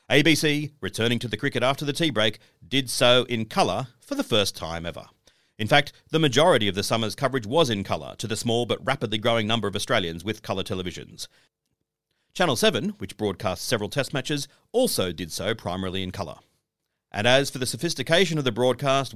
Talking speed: 195 wpm